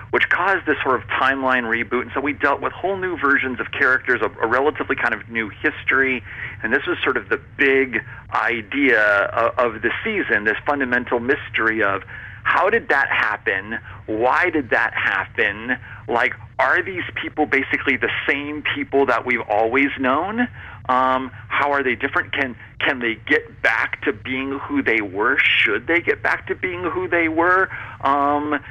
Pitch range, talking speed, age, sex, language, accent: 115-140 Hz, 180 wpm, 50-69, male, English, American